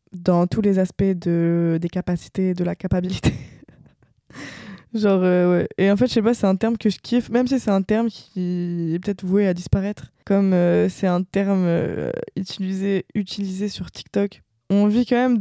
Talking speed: 195 wpm